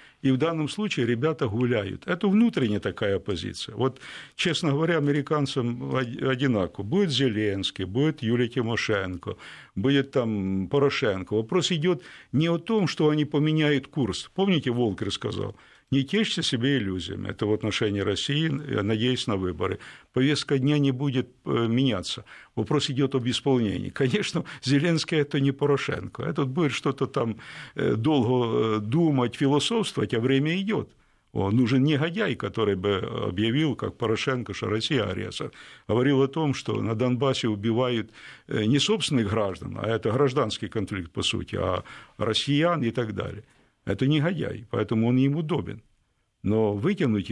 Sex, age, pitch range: male, 60-79, 110-145 Hz